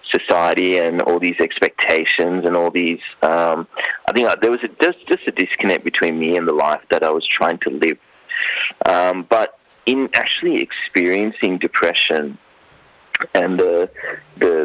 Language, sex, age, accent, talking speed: English, male, 30-49, Australian, 150 wpm